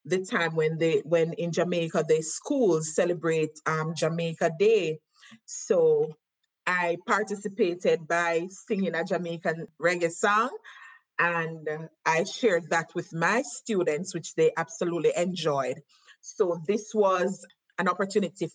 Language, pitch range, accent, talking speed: English, 170-225 Hz, Nigerian, 125 wpm